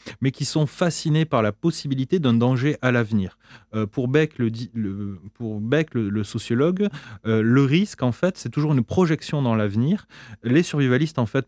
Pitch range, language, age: 110-145 Hz, French, 30-49